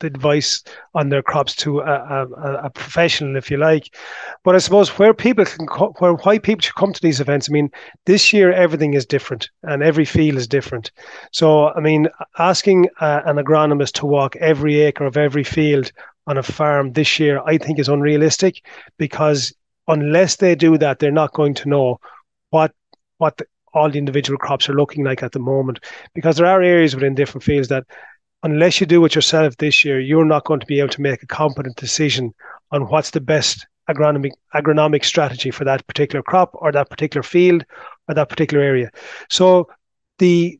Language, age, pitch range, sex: English, 30-49, 140-160 Hz, male